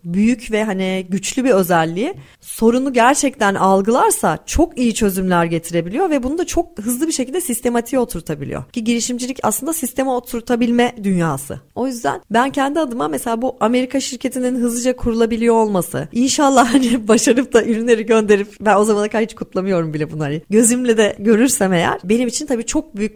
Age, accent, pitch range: 30-49, native, 200-255 Hz